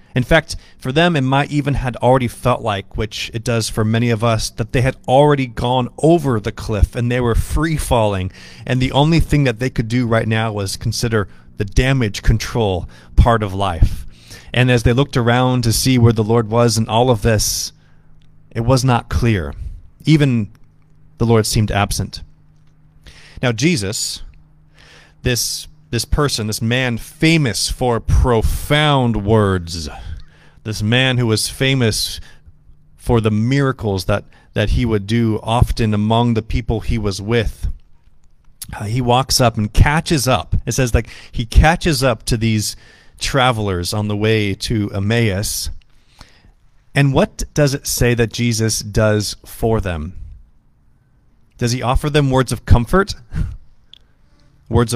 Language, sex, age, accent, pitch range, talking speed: English, male, 30-49, American, 100-125 Hz, 155 wpm